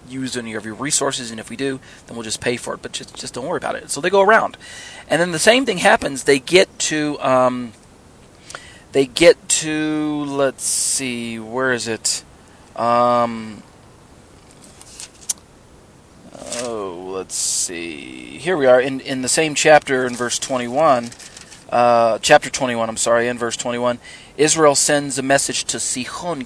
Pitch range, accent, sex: 115-140 Hz, American, male